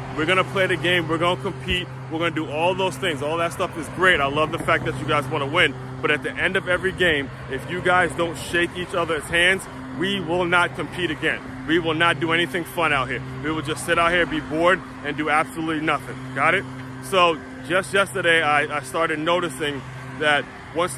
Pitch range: 145-175 Hz